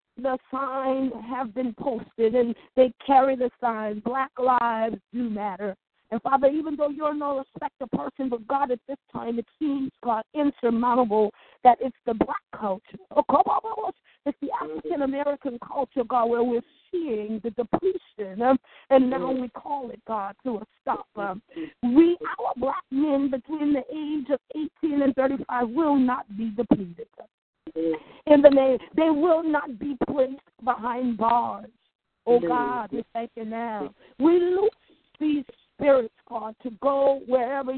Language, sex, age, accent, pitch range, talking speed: English, female, 50-69, American, 230-285 Hz, 145 wpm